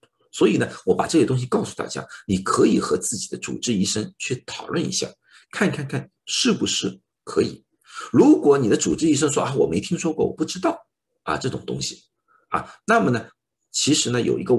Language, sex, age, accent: Chinese, male, 50-69, native